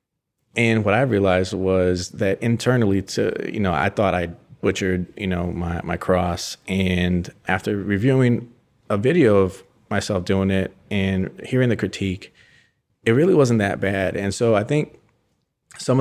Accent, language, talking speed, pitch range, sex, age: American, English, 160 wpm, 90-110 Hz, male, 30-49